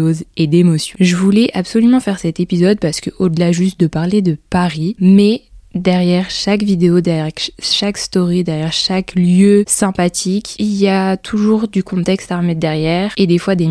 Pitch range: 170-200 Hz